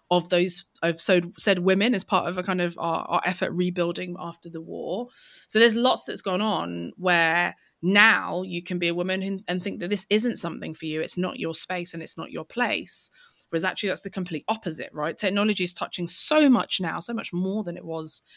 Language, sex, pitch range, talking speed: English, female, 165-200 Hz, 220 wpm